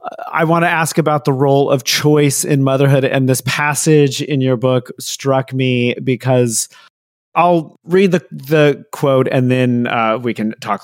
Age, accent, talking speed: 30-49, American, 170 wpm